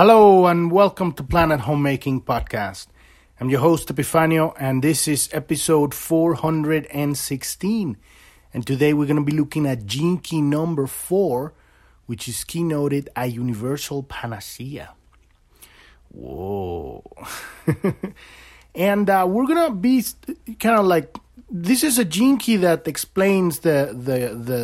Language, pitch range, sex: English, 125-170 Hz, male